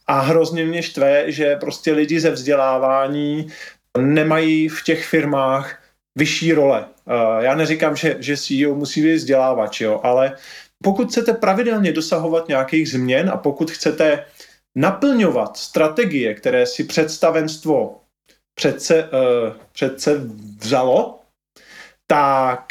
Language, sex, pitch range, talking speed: Slovak, male, 135-175 Hz, 115 wpm